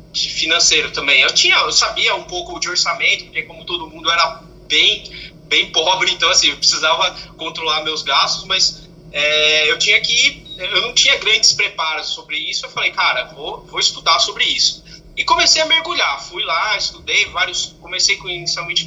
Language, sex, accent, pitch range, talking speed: English, male, Brazilian, 165-195 Hz, 180 wpm